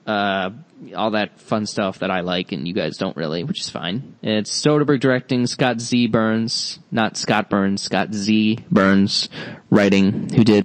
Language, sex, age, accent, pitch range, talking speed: English, male, 20-39, American, 105-140 Hz, 175 wpm